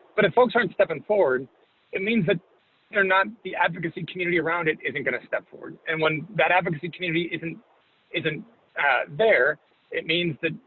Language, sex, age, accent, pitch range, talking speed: English, male, 40-59, American, 155-200 Hz, 180 wpm